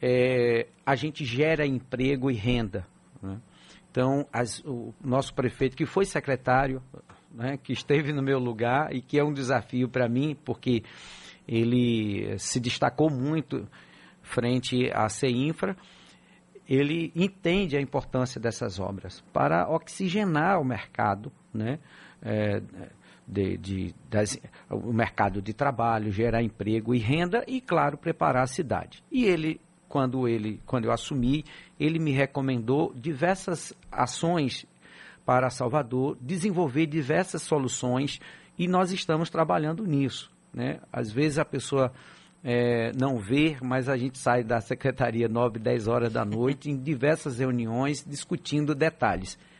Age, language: 50-69, Portuguese